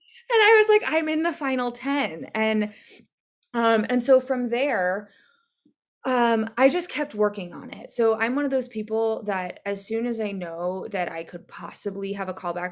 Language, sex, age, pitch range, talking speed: English, female, 20-39, 185-230 Hz, 195 wpm